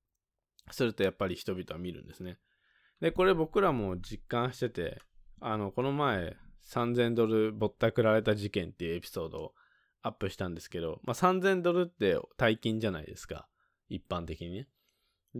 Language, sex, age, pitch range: Japanese, male, 20-39, 90-130 Hz